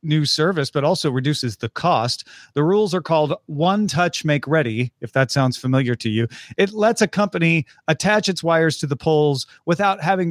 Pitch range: 130-180 Hz